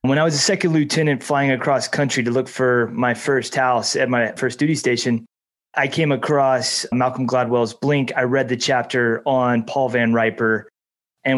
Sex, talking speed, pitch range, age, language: male, 185 wpm, 125-150 Hz, 30-49, English